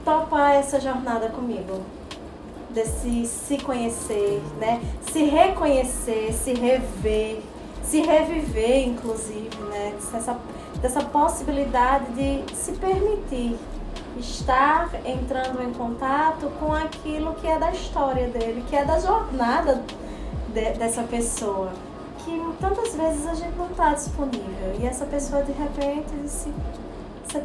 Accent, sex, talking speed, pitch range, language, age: Brazilian, female, 120 wpm, 230-300 Hz, Portuguese, 20-39